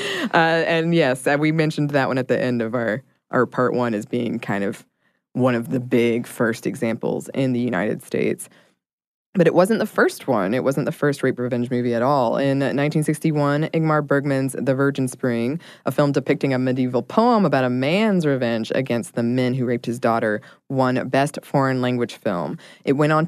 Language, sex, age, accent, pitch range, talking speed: English, female, 20-39, American, 125-155 Hz, 195 wpm